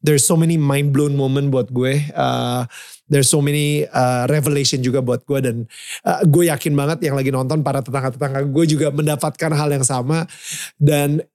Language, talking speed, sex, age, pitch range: Indonesian, 180 wpm, male, 30-49, 140-170 Hz